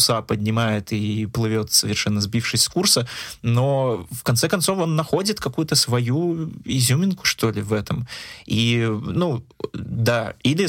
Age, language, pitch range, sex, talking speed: 20-39, Russian, 110-125 Hz, male, 135 wpm